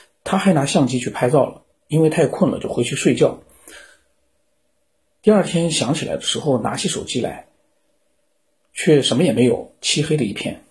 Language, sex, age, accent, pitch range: Chinese, male, 50-69, native, 140-225 Hz